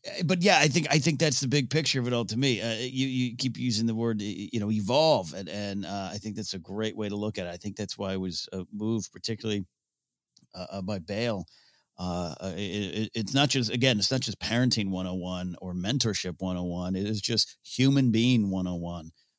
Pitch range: 90-120 Hz